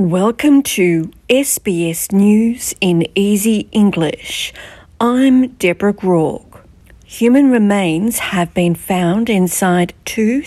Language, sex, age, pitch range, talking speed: English, female, 50-69, 170-210 Hz, 95 wpm